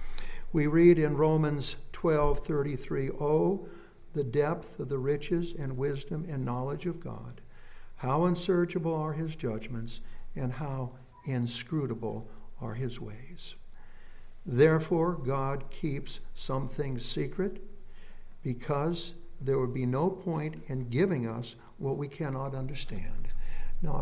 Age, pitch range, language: 60-79, 130-160 Hz, English